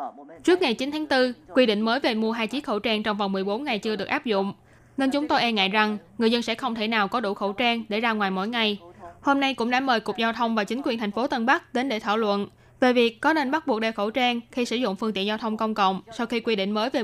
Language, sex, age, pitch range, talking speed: Vietnamese, female, 20-39, 210-250 Hz, 305 wpm